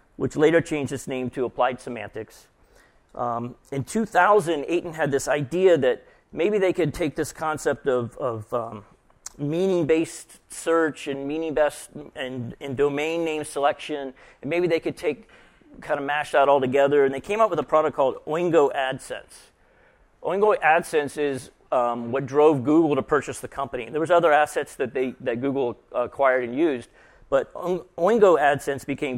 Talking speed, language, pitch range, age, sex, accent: 165 wpm, English, 130-160 Hz, 40-59, male, American